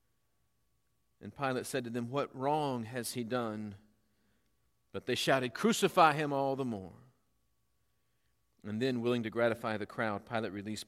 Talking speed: 150 wpm